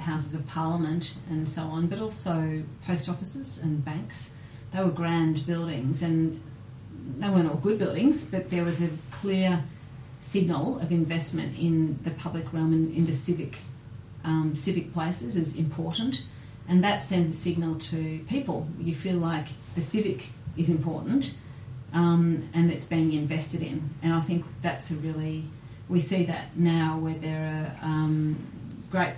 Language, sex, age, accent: English, female, 40-59, Australian